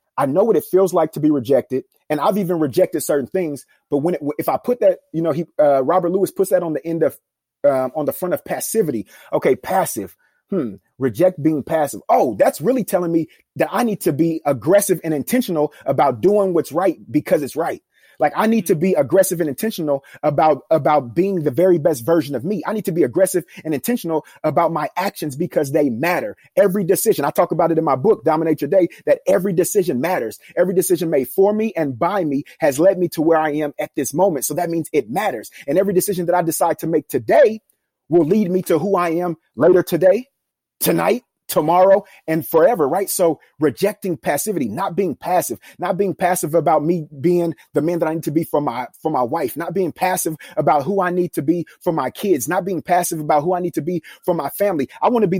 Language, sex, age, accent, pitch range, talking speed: English, male, 30-49, American, 155-195 Hz, 225 wpm